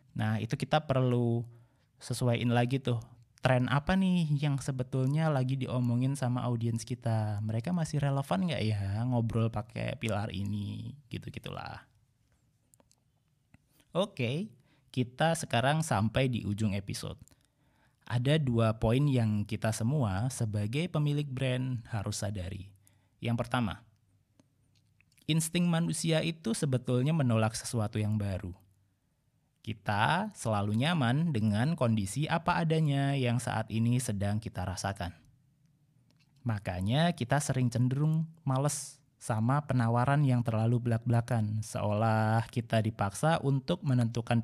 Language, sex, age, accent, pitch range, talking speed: Indonesian, male, 20-39, native, 110-140 Hz, 115 wpm